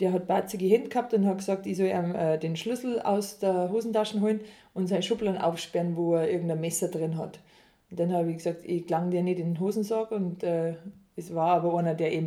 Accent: German